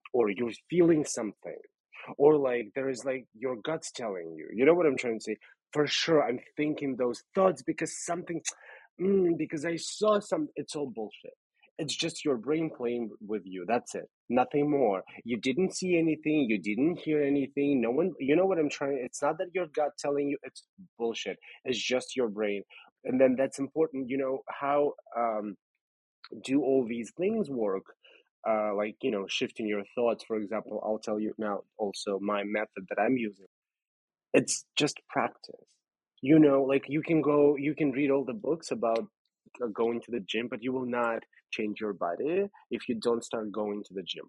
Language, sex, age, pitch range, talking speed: English, male, 30-49, 115-155 Hz, 190 wpm